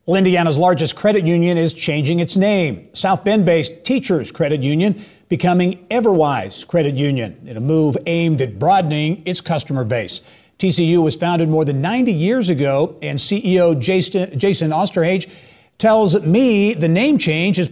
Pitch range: 135-185 Hz